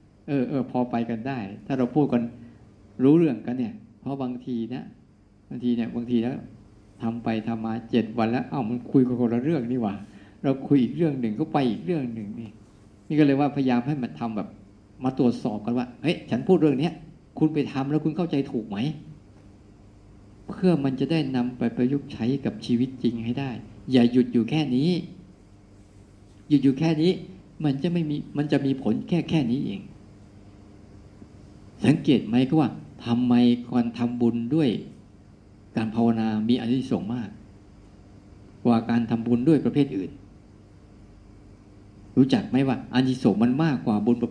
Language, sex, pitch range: Thai, male, 100-140 Hz